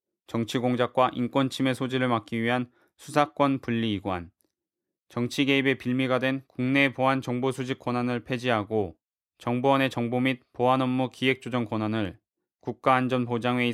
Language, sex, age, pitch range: Korean, male, 20-39, 120-135 Hz